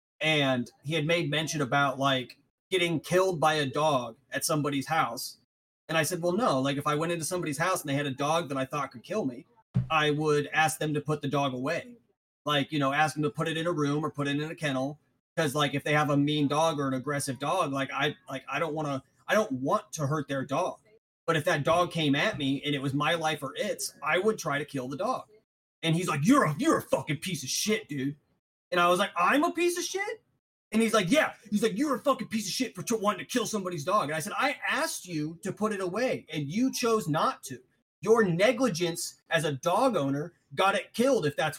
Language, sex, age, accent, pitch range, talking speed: English, male, 30-49, American, 140-190 Hz, 255 wpm